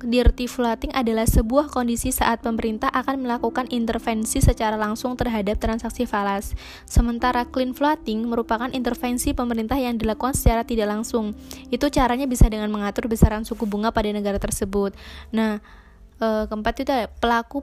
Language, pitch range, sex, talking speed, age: Indonesian, 210-245 Hz, female, 140 wpm, 20-39